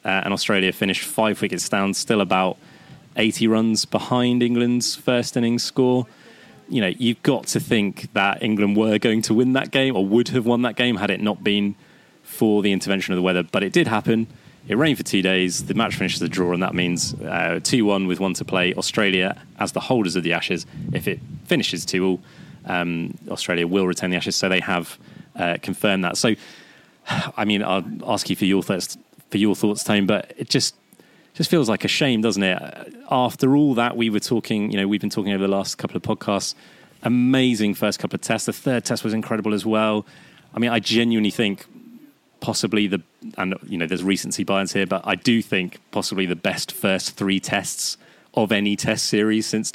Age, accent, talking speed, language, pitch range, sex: 20-39, British, 210 wpm, English, 95-120 Hz, male